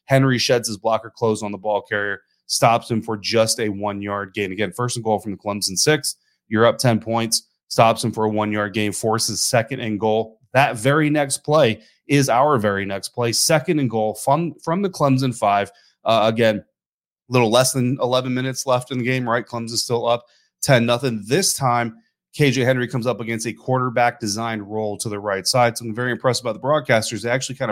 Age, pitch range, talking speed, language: 30-49, 110-130 Hz, 210 wpm, English